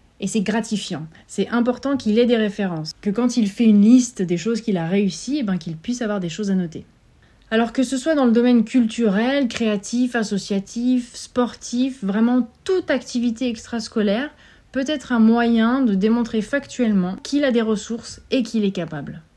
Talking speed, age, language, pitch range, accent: 180 wpm, 30-49, French, 190-250 Hz, French